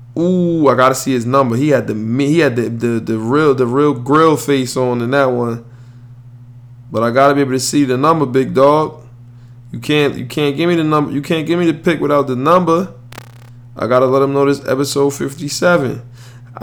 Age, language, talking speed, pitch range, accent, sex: 20-39, English, 215 wpm, 120-140 Hz, American, male